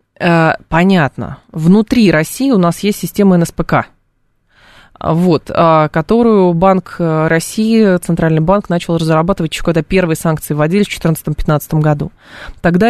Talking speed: 105 wpm